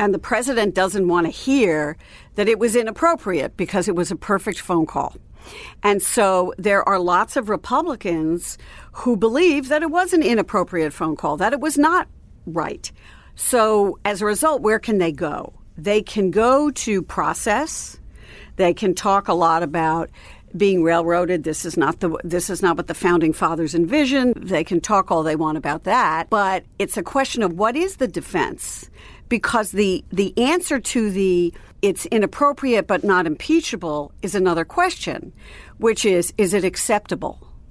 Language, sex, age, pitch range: English, female, 60-79, 175-230 Hz